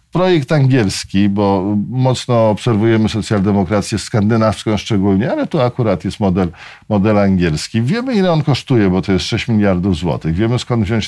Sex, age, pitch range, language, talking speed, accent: male, 50-69, 105-130 Hz, Polish, 150 wpm, native